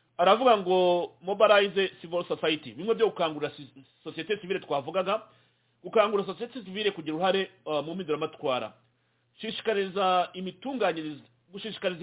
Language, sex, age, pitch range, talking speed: English, male, 40-59, 145-190 Hz, 125 wpm